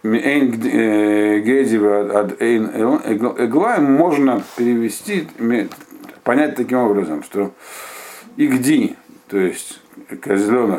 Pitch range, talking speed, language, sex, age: 100-125 Hz, 65 wpm, Russian, male, 50-69